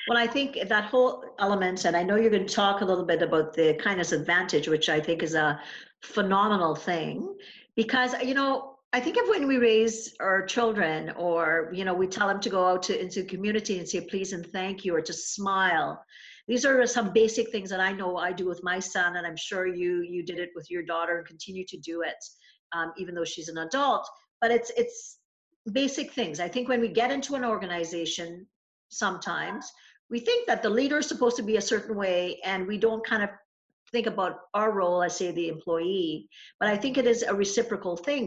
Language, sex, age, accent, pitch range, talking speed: English, female, 50-69, American, 175-235 Hz, 220 wpm